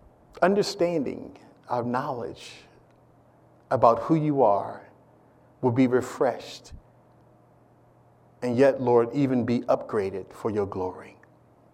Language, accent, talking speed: English, American, 95 wpm